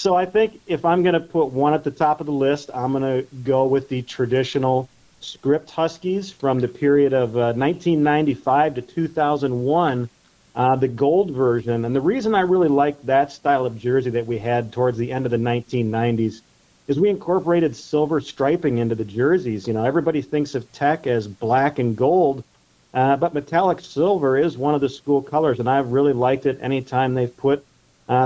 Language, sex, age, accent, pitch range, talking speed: English, male, 40-59, American, 120-140 Hz, 195 wpm